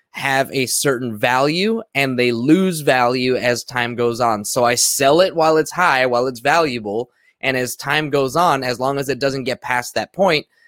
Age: 20-39